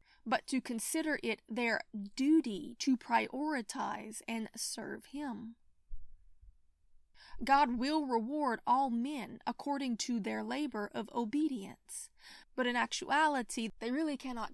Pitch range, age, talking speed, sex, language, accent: 225-275 Hz, 30-49, 115 wpm, female, English, American